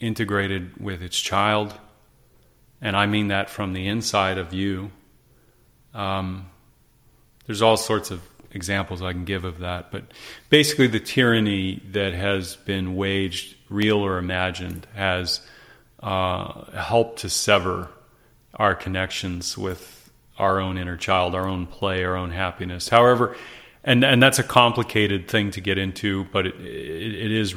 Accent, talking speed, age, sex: American, 150 wpm, 30-49, male